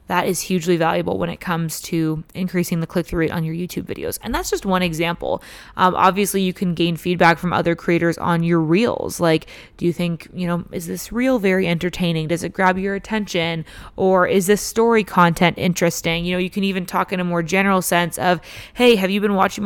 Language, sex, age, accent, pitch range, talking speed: English, female, 20-39, American, 170-190 Hz, 220 wpm